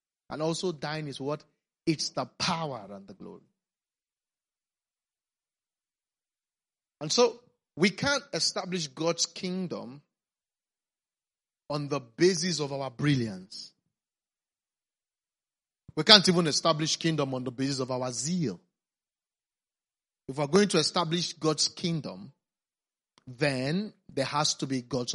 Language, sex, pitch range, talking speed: English, male, 135-180 Hz, 115 wpm